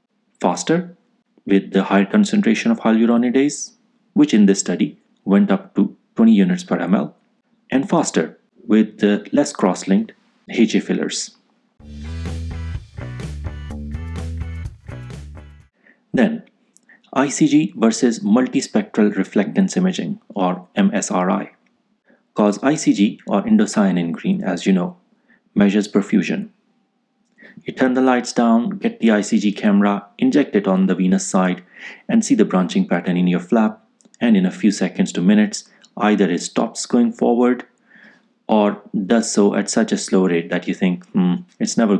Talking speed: 135 wpm